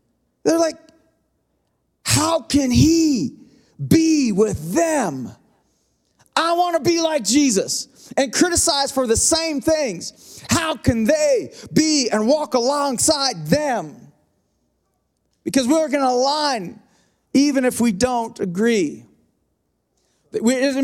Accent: American